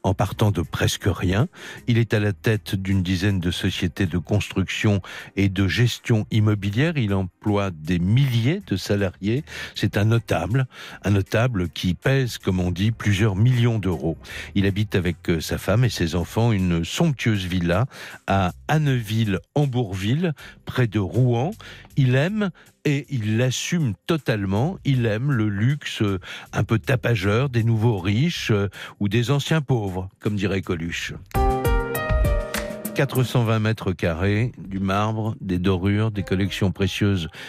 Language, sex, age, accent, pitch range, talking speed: French, male, 60-79, French, 95-120 Hz, 140 wpm